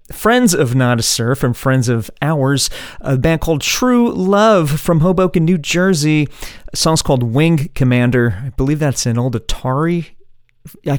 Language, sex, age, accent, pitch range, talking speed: English, male, 40-59, American, 120-160 Hz, 165 wpm